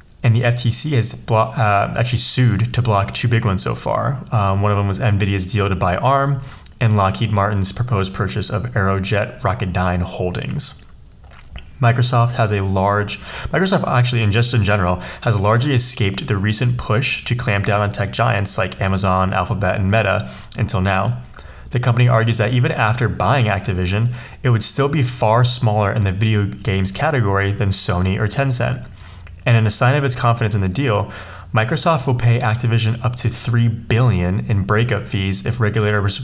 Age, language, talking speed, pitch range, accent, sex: 20-39, English, 180 wpm, 100-120 Hz, American, male